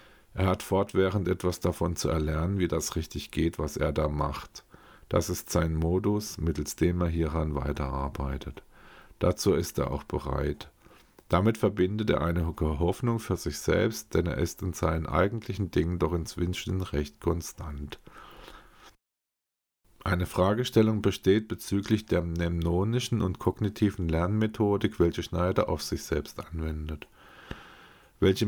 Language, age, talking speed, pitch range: German, 50-69, 135 wpm, 80-100 Hz